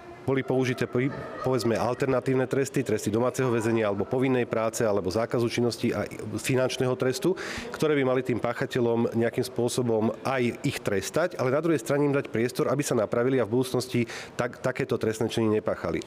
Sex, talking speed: male, 170 wpm